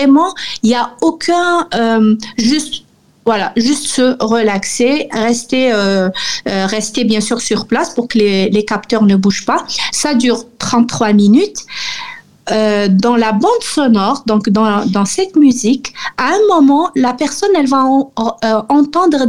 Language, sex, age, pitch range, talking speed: French, female, 50-69, 220-275 Hz, 155 wpm